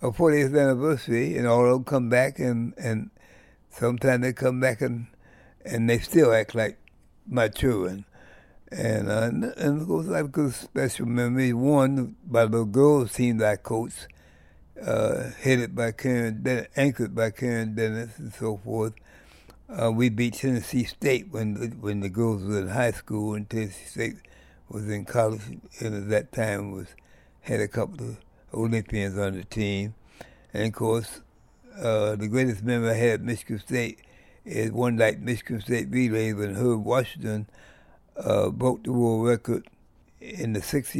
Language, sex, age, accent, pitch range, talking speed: English, male, 60-79, American, 110-125 Hz, 160 wpm